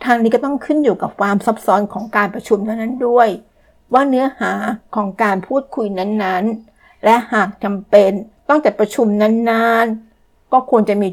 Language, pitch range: Thai, 195-235 Hz